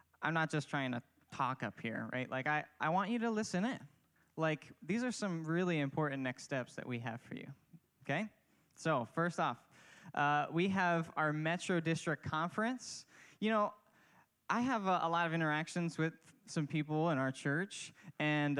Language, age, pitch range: English, 10-29, 140-175 Hz